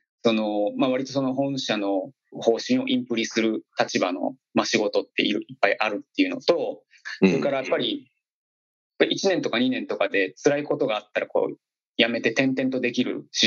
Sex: male